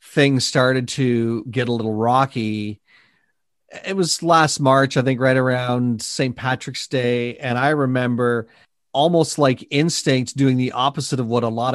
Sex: male